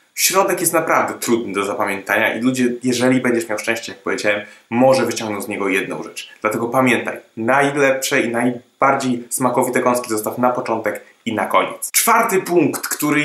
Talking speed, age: 165 wpm, 20-39